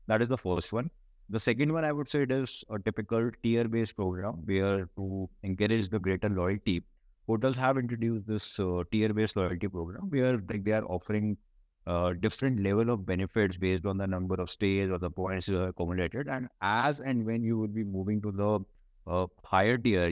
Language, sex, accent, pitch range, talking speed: English, male, Indian, 95-115 Hz, 205 wpm